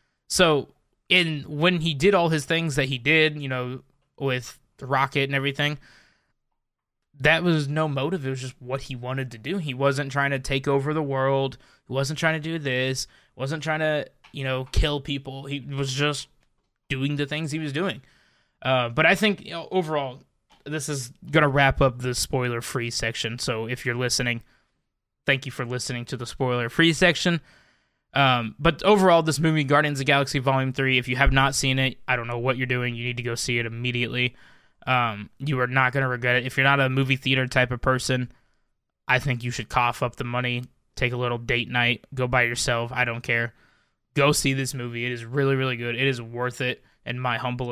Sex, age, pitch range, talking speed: male, 20-39, 125-145 Hz, 215 wpm